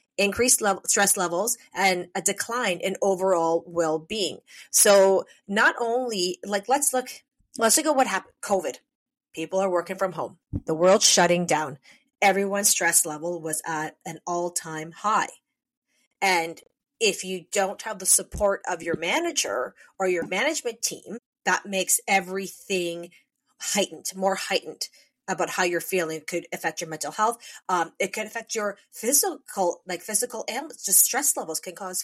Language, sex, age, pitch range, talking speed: English, female, 30-49, 175-235 Hz, 155 wpm